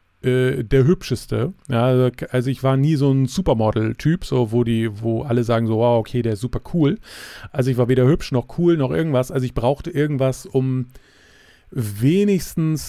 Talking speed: 170 wpm